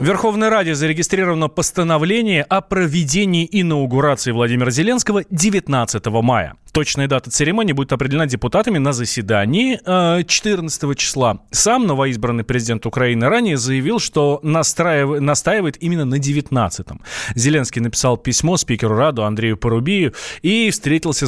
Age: 20-39